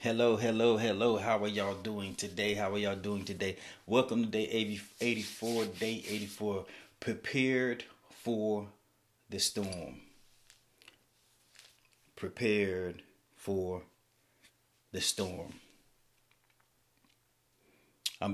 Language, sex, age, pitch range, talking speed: English, male, 30-49, 95-105 Hz, 90 wpm